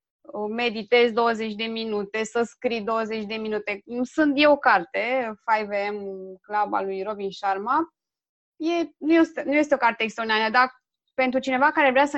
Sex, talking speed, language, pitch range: female, 155 wpm, Romanian, 225-295 Hz